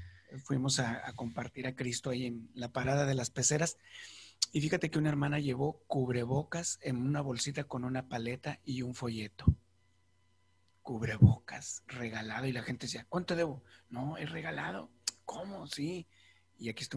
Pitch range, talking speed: 120-155 Hz, 160 wpm